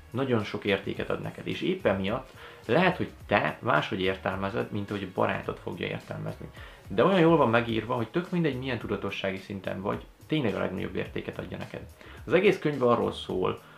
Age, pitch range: 30-49, 95-120 Hz